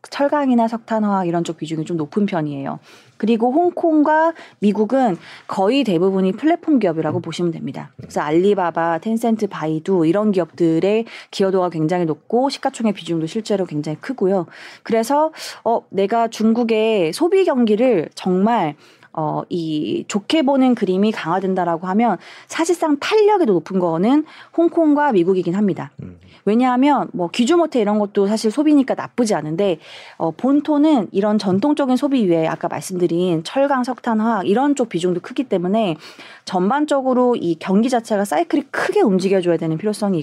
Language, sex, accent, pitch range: Korean, female, native, 175-265 Hz